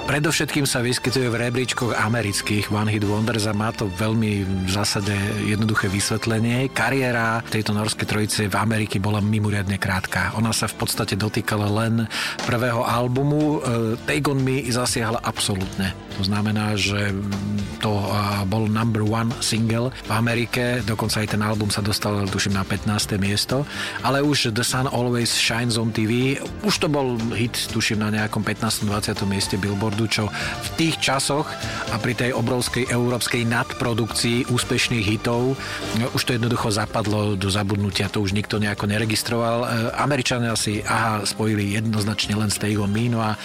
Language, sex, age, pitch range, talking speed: Slovak, male, 40-59, 105-125 Hz, 150 wpm